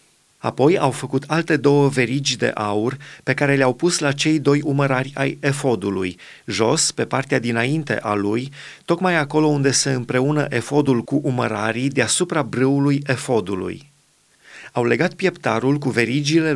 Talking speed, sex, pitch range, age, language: 145 wpm, male, 120-155 Hz, 30-49, Romanian